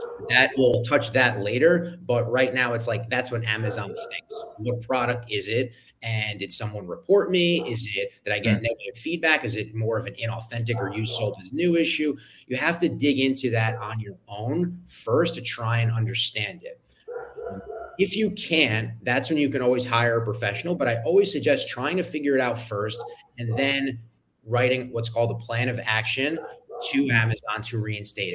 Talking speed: 195 wpm